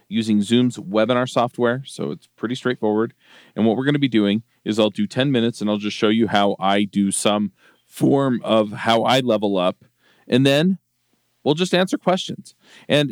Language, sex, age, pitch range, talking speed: English, male, 40-59, 95-120 Hz, 190 wpm